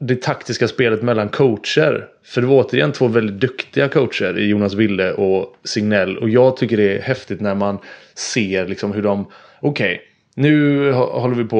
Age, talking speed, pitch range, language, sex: 20-39, 180 wpm, 105-135 Hz, English, male